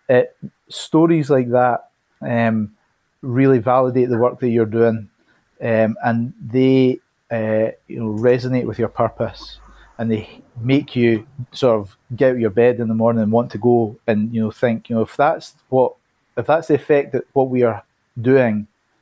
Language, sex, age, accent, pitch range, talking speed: English, male, 30-49, British, 110-130 Hz, 185 wpm